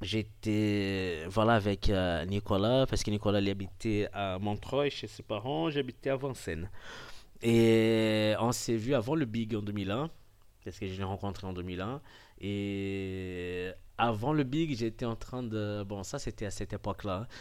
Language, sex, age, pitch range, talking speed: French, male, 20-39, 100-130 Hz, 160 wpm